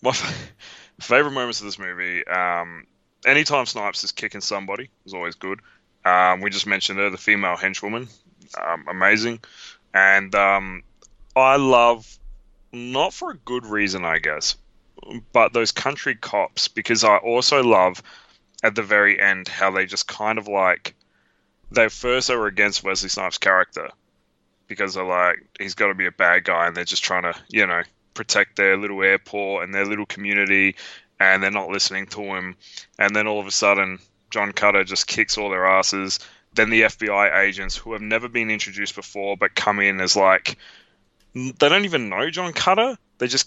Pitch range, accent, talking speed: 95-125 Hz, Australian, 175 wpm